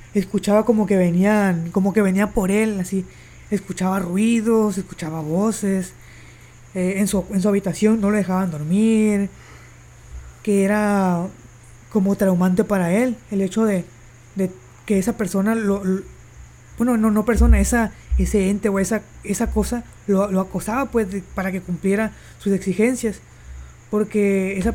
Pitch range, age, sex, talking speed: 180-220 Hz, 20-39, female, 150 wpm